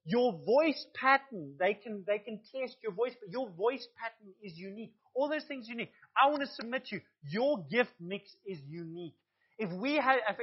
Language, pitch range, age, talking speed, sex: English, 195-265 Hz, 30-49, 200 wpm, male